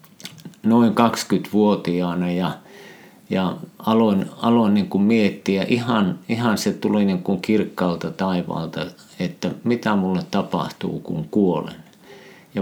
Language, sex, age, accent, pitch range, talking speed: Finnish, male, 50-69, native, 95-115 Hz, 115 wpm